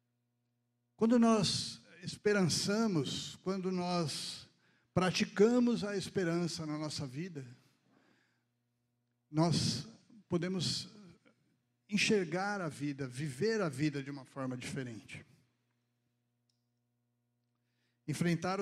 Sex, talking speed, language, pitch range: male, 75 wpm, Portuguese, 130-180 Hz